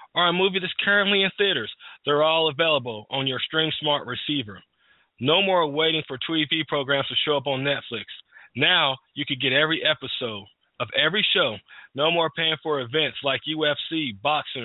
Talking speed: 170 wpm